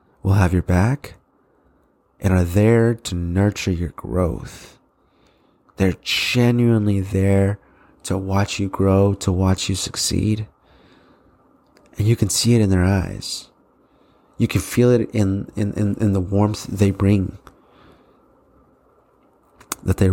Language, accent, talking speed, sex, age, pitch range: English, American, 130 wpm, male, 30-49, 95-115 Hz